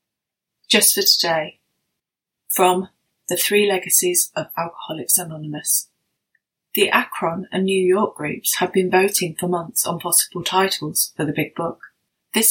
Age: 30-49